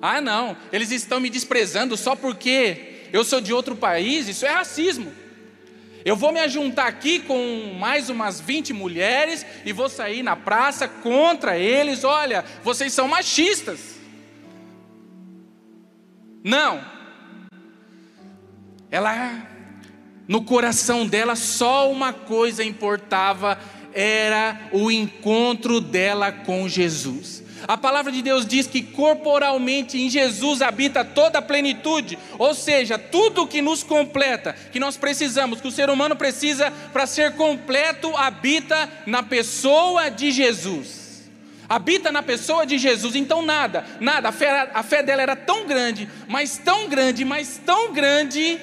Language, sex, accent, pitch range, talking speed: Portuguese, male, Brazilian, 225-290 Hz, 135 wpm